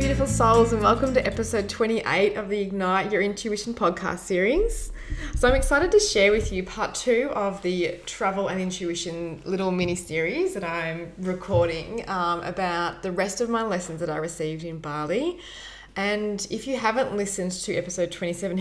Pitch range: 170-200 Hz